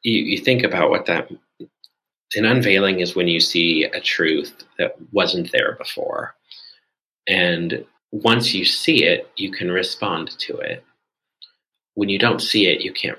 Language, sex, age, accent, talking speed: English, male, 30-49, American, 160 wpm